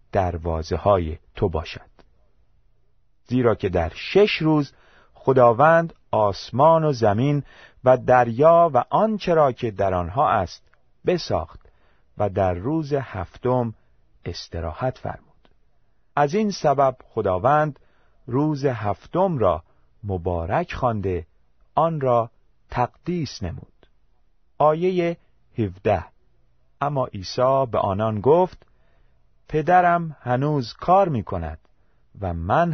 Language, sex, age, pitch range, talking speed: Persian, male, 40-59, 95-150 Hz, 100 wpm